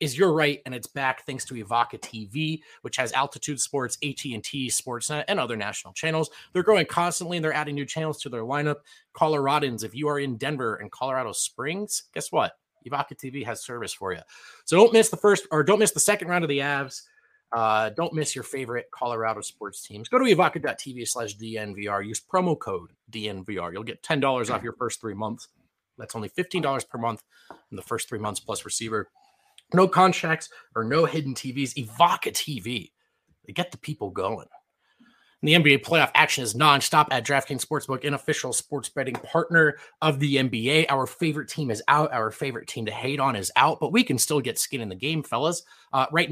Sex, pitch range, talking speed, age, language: male, 125-160 Hz, 205 wpm, 30-49, English